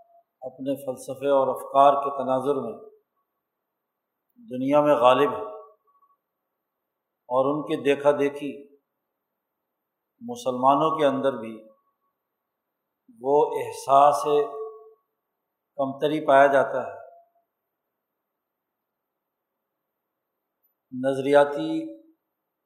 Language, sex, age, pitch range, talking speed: Urdu, male, 50-69, 140-220 Hz, 70 wpm